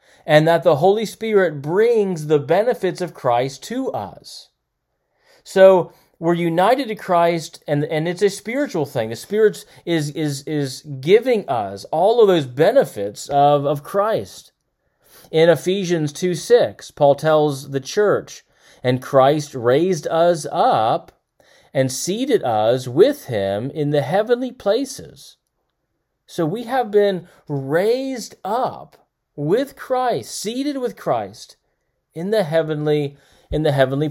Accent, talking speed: American, 130 wpm